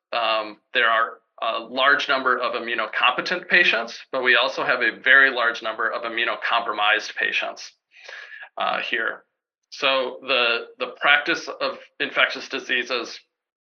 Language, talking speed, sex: English, 130 wpm, male